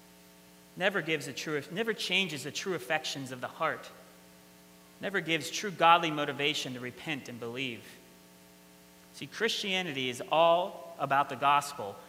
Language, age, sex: English, 30-49, male